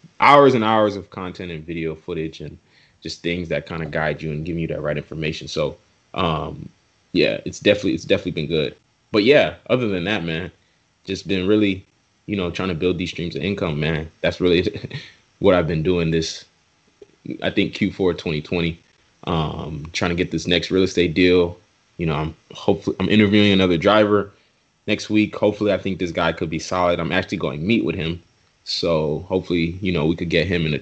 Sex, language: male, English